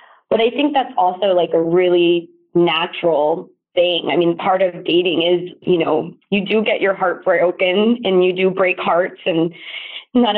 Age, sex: 20-39, female